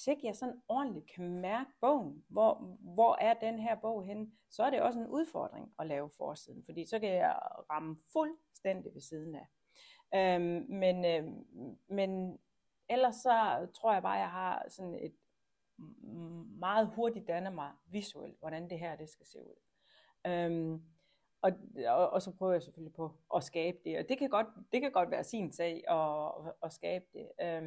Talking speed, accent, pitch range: 185 wpm, native, 165-225 Hz